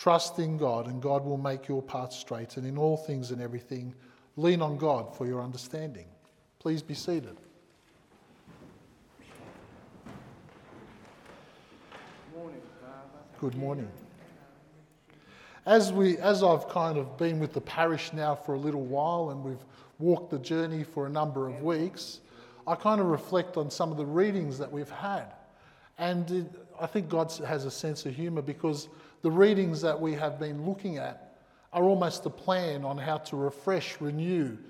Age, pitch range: 50-69, 140-175 Hz